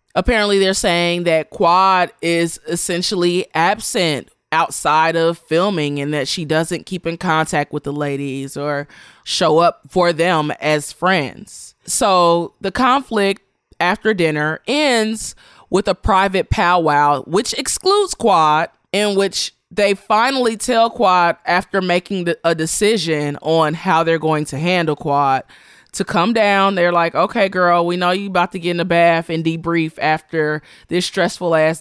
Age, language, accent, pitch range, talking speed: 20-39, English, American, 145-185 Hz, 150 wpm